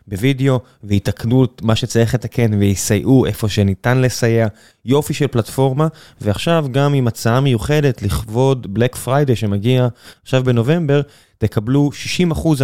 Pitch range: 110-145 Hz